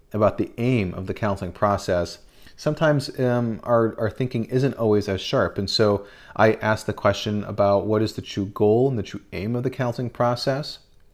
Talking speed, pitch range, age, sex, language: 195 wpm, 95-120 Hz, 30-49, male, English